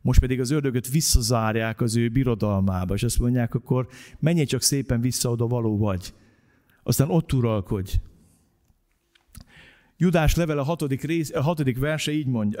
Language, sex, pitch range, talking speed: Hungarian, male, 140-210 Hz, 150 wpm